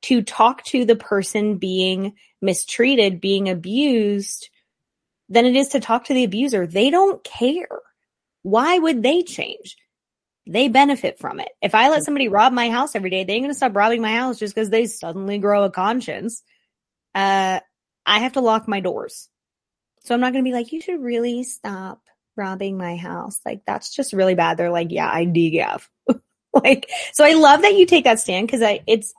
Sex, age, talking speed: female, 20-39, 195 wpm